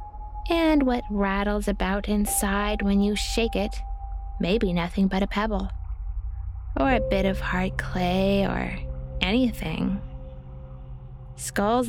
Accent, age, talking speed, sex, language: American, 20-39, 120 wpm, female, English